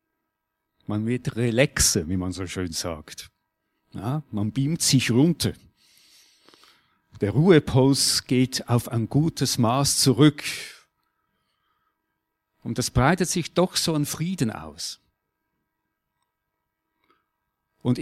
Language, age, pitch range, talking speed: German, 50-69, 120-165 Hz, 105 wpm